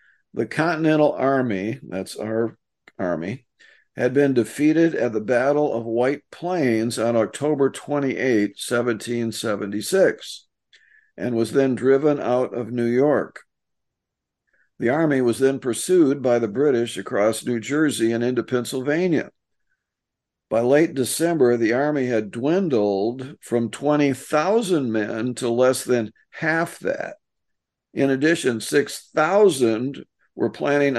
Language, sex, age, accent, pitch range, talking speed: English, male, 50-69, American, 115-140 Hz, 120 wpm